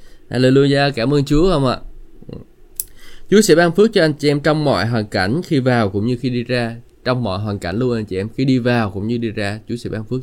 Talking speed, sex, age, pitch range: 260 wpm, male, 20-39, 115-145 Hz